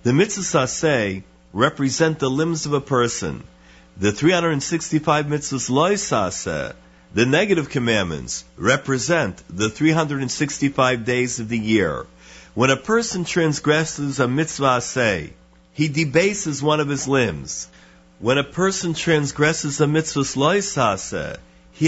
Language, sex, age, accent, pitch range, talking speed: English, male, 50-69, American, 110-160 Hz, 115 wpm